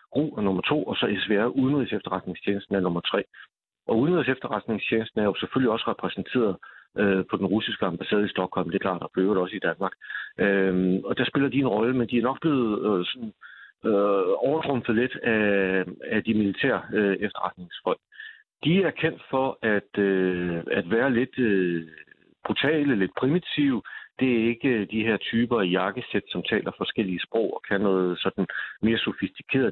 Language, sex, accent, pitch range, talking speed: Danish, male, native, 95-120 Hz, 175 wpm